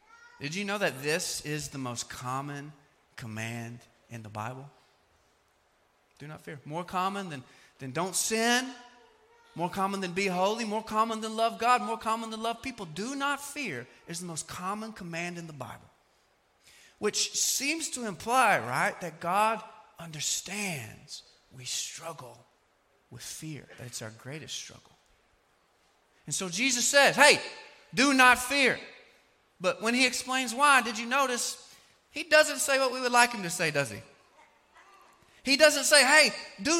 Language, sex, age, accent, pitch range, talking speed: English, male, 30-49, American, 170-260 Hz, 160 wpm